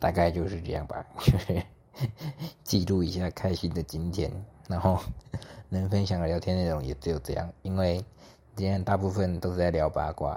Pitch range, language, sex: 85-105 Hz, Chinese, male